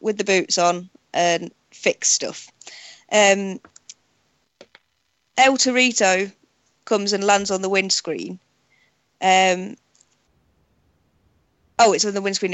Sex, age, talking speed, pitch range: female, 20-39, 105 wpm, 185-230 Hz